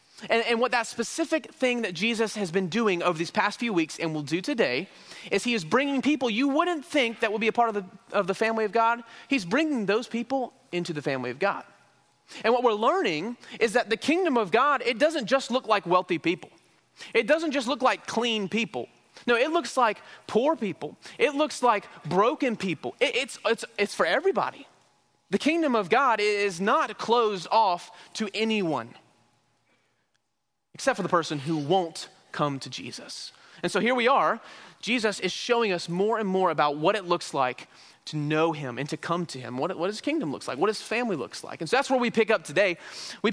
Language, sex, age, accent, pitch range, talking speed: English, male, 30-49, American, 180-240 Hz, 215 wpm